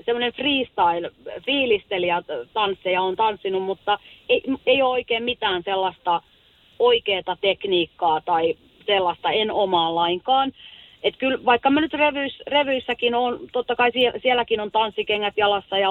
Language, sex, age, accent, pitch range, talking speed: Finnish, female, 30-49, native, 190-265 Hz, 120 wpm